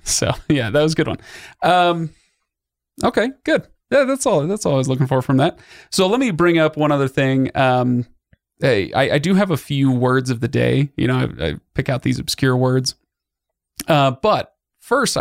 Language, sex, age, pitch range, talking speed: English, male, 30-49, 125-145 Hz, 210 wpm